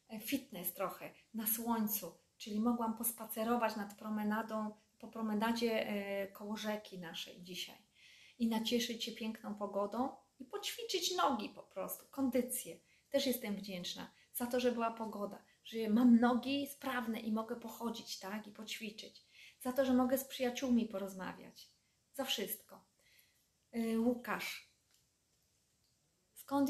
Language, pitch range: Polish, 210-240 Hz